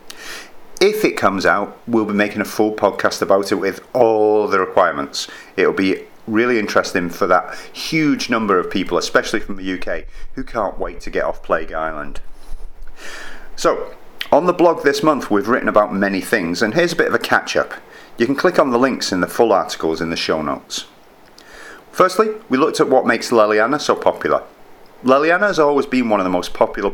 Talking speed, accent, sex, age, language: 195 wpm, British, male, 30-49, English